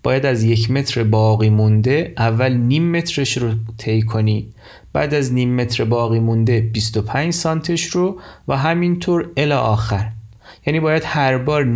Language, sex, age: Persian, male, 30-49